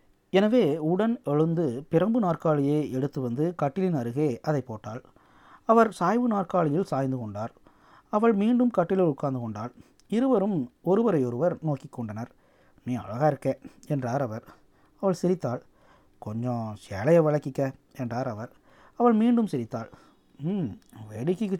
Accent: native